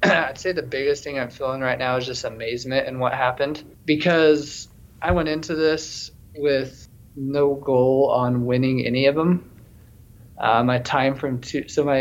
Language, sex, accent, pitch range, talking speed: English, male, American, 120-140 Hz, 175 wpm